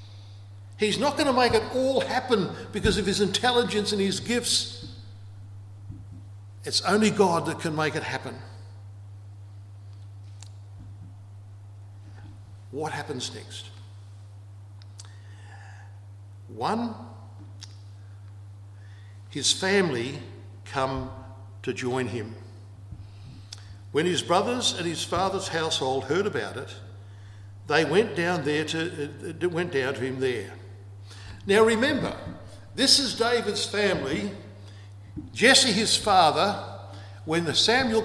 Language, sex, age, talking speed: English, male, 60-79, 95 wpm